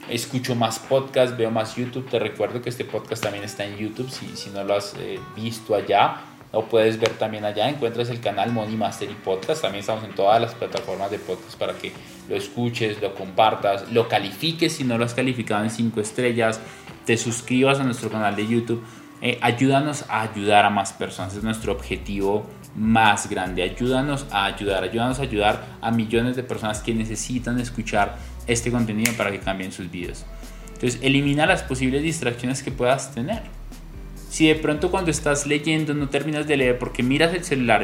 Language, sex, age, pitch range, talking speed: Spanish, male, 20-39, 105-130 Hz, 185 wpm